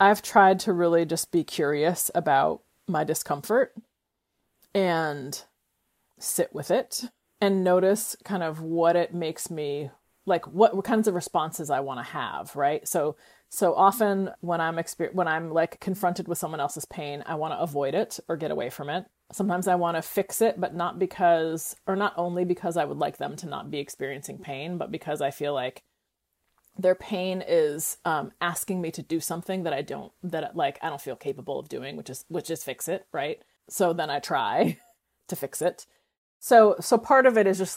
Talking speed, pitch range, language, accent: 200 wpm, 160-195 Hz, English, American